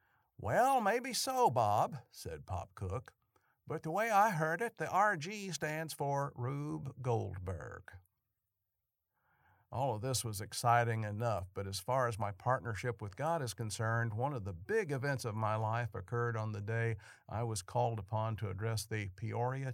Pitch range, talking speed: 100-125 Hz, 165 wpm